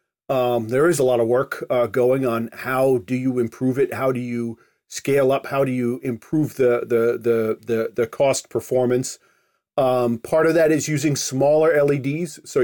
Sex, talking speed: male, 190 wpm